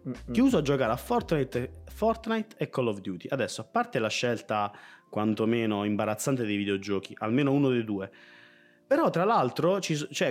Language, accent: Italian, native